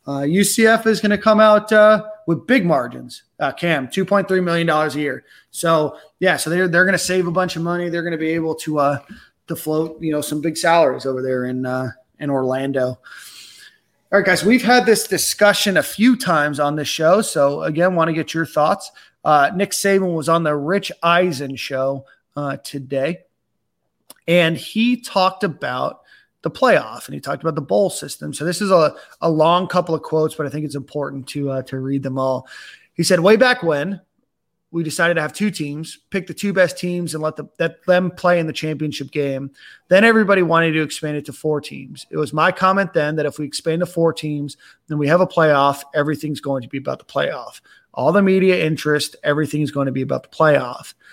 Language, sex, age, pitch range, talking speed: English, male, 30-49, 145-185 Hz, 215 wpm